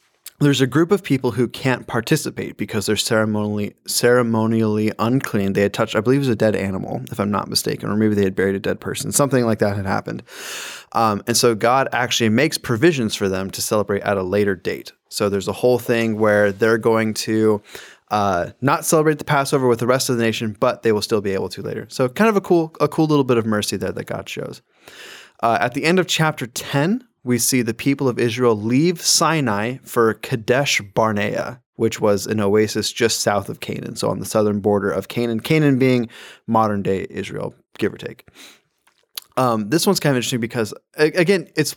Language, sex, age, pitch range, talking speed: English, male, 20-39, 110-140 Hz, 215 wpm